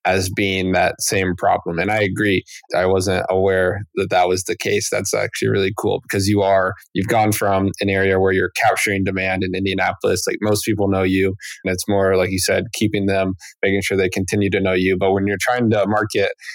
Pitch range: 95-110 Hz